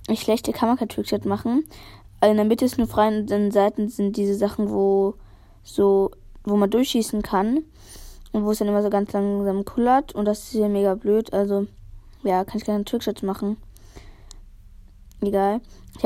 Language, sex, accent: German, female, German